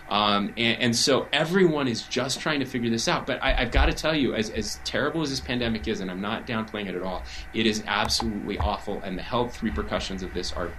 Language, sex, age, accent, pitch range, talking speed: English, male, 30-49, American, 90-125 Hz, 250 wpm